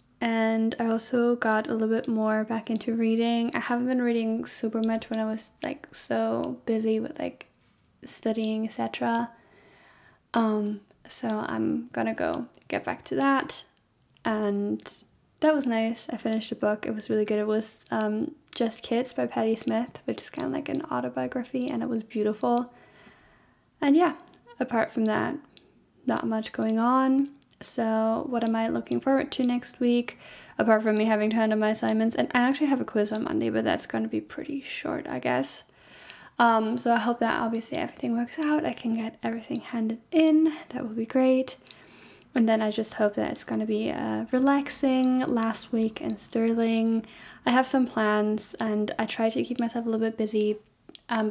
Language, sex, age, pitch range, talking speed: English, female, 10-29, 215-240 Hz, 185 wpm